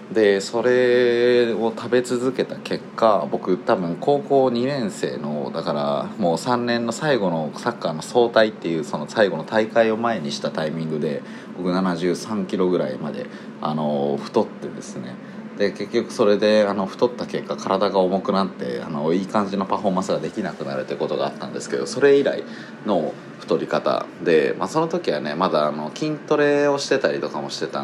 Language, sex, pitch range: Japanese, male, 85-125 Hz